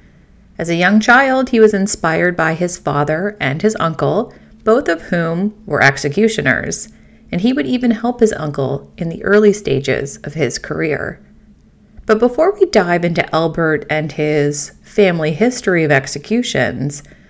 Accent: American